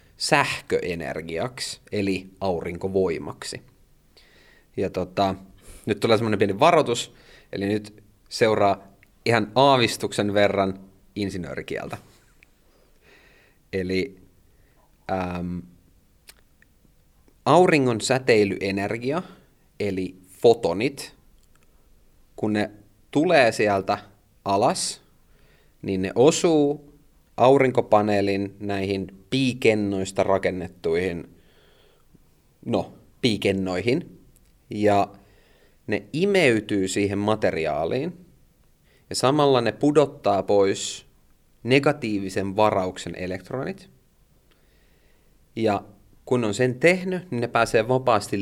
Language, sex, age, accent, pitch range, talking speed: Finnish, male, 30-49, native, 95-115 Hz, 75 wpm